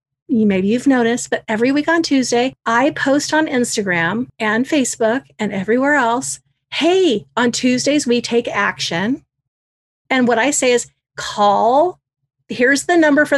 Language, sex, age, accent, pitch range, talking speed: English, female, 40-59, American, 210-280 Hz, 150 wpm